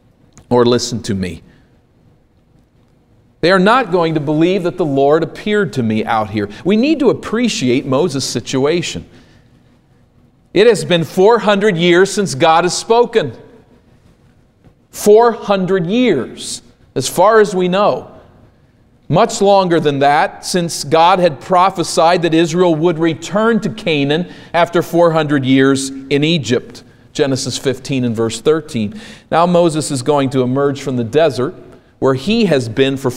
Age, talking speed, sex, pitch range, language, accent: 40-59, 140 wpm, male, 135-200 Hz, English, American